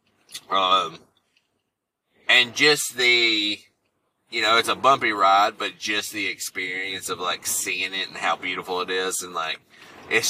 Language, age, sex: English, 20-39, male